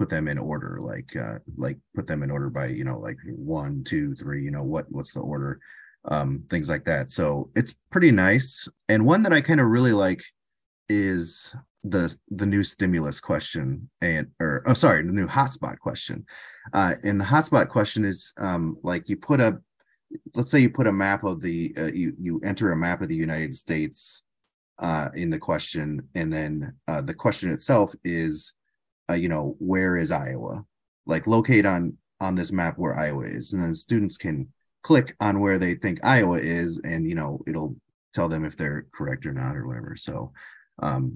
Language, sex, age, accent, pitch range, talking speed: English, male, 30-49, American, 80-110 Hz, 195 wpm